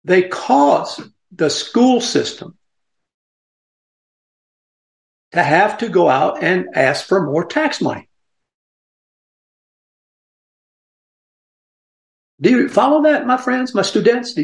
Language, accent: English, American